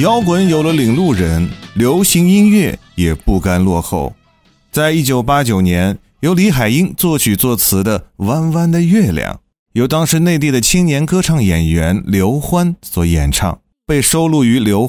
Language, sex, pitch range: Chinese, male, 95-160 Hz